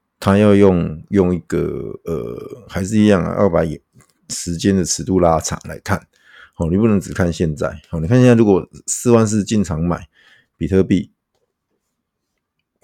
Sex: male